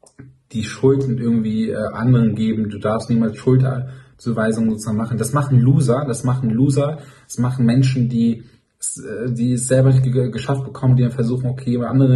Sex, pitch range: male, 115-130 Hz